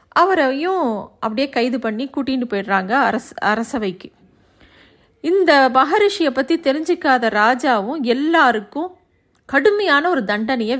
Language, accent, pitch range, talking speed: Tamil, native, 225-285 Hz, 95 wpm